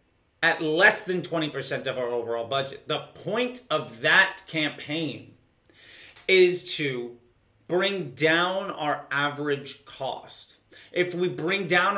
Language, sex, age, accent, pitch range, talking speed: English, male, 30-49, American, 150-180 Hz, 120 wpm